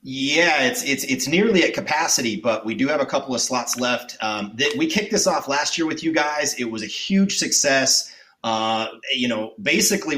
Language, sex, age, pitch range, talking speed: English, male, 30-49, 125-160 Hz, 210 wpm